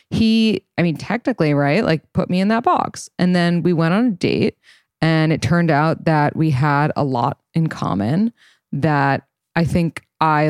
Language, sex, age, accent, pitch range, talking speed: English, female, 20-39, American, 150-195 Hz, 190 wpm